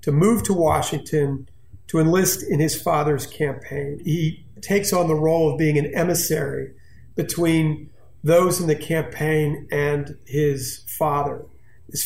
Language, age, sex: English, 40-59, male